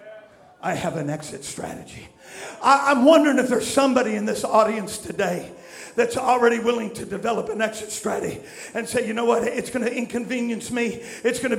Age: 50-69